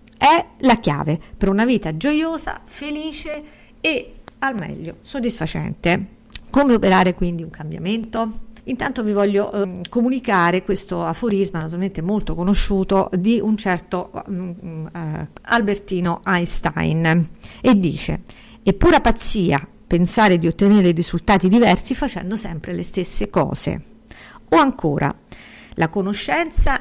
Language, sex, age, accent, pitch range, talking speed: Italian, female, 50-69, native, 175-230 Hz, 120 wpm